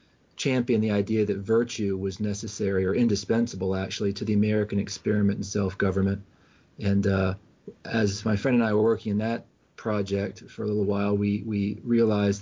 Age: 40-59